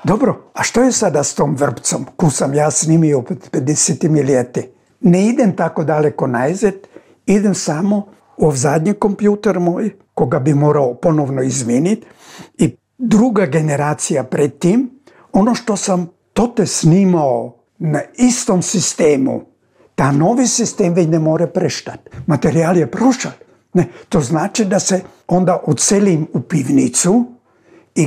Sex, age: male, 60-79